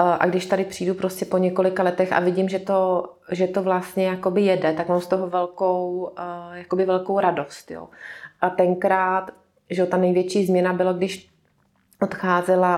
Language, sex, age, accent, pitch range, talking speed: Czech, female, 30-49, native, 175-185 Hz, 160 wpm